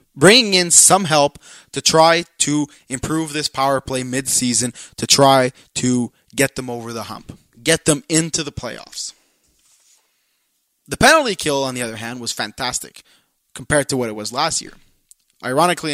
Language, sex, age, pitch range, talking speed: English, male, 20-39, 125-165 Hz, 160 wpm